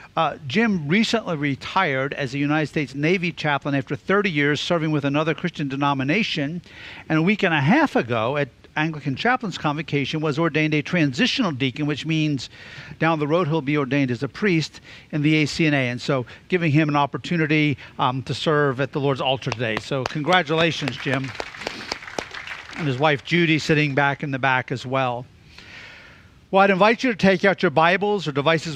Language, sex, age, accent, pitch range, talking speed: English, male, 50-69, American, 145-180 Hz, 180 wpm